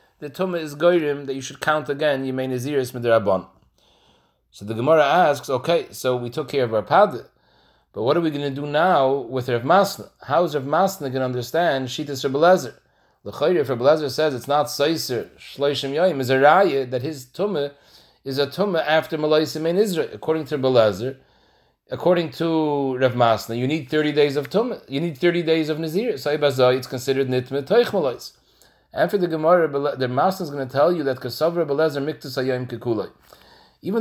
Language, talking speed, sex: English, 190 wpm, male